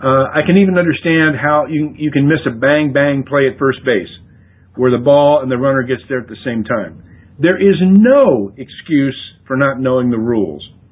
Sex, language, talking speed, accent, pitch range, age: male, English, 205 wpm, American, 100-165 Hz, 50-69